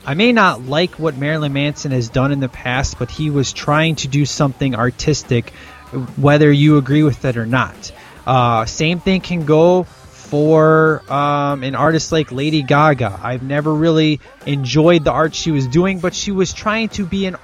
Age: 20-39